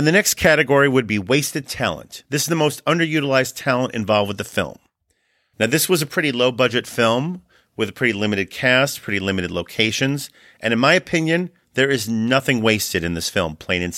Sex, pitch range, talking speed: male, 110-145 Hz, 200 wpm